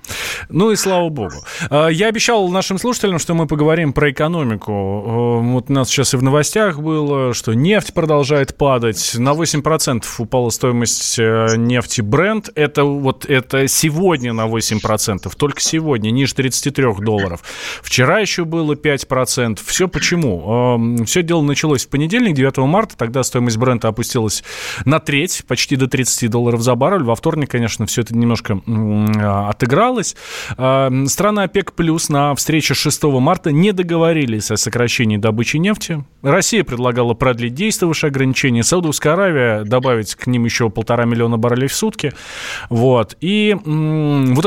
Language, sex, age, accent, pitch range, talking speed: Russian, male, 20-39, native, 115-160 Hz, 140 wpm